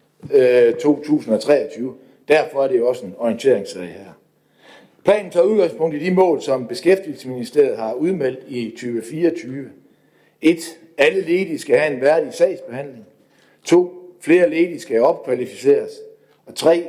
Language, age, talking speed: Danish, 60-79, 125 wpm